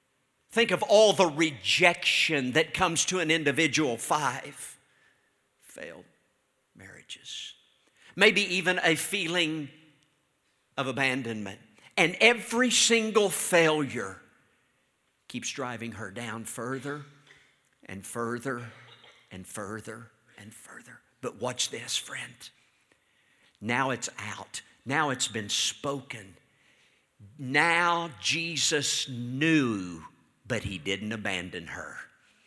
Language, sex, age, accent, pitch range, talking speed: English, male, 50-69, American, 130-200 Hz, 100 wpm